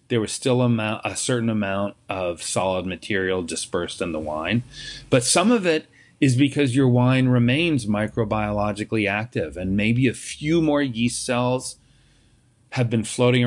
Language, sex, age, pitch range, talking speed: English, male, 40-59, 105-125 Hz, 150 wpm